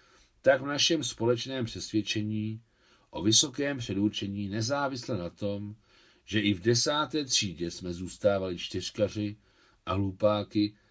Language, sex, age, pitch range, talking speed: Czech, male, 50-69, 95-120 Hz, 115 wpm